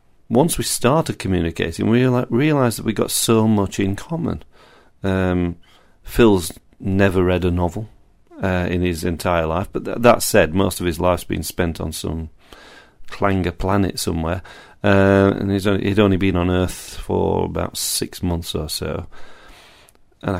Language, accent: English, British